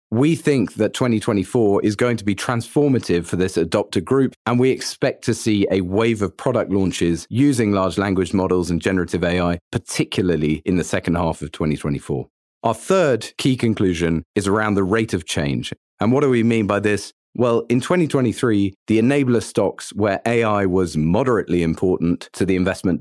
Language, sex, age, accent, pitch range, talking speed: English, male, 40-59, British, 95-125 Hz, 175 wpm